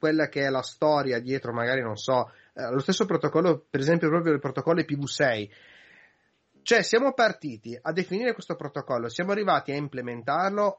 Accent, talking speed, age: native, 165 wpm, 30-49